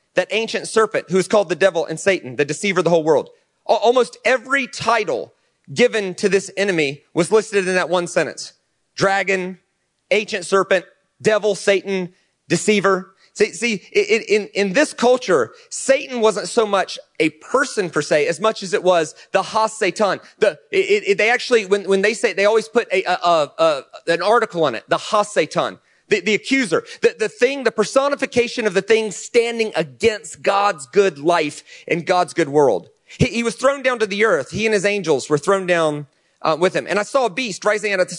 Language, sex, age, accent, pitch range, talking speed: English, male, 30-49, American, 175-225 Hz, 200 wpm